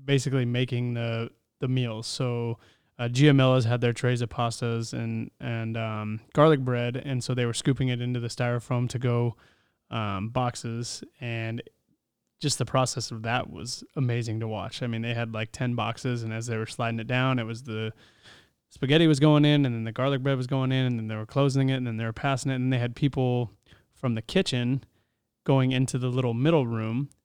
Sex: male